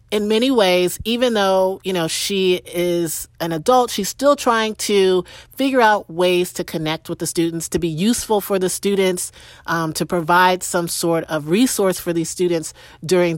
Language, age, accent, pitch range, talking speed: English, 40-59, American, 170-220 Hz, 180 wpm